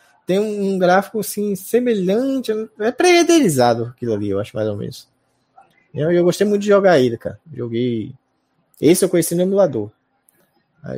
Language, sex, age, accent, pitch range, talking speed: Portuguese, male, 20-39, Brazilian, 115-165 Hz, 160 wpm